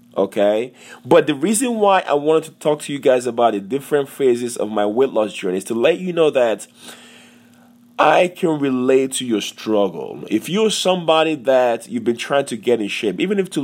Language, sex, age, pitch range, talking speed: English, male, 30-49, 115-155 Hz, 205 wpm